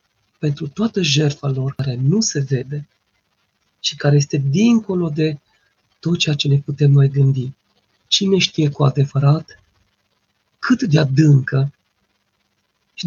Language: Romanian